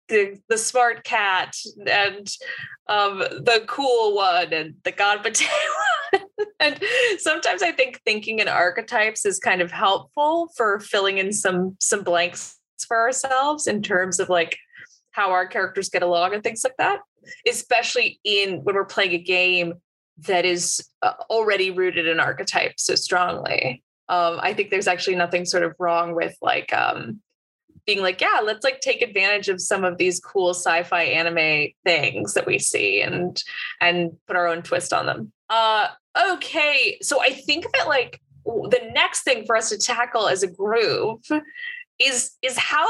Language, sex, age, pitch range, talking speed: English, female, 20-39, 180-300 Hz, 165 wpm